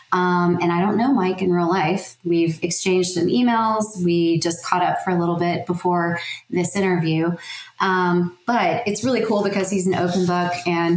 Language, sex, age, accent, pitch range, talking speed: English, female, 20-39, American, 175-205 Hz, 190 wpm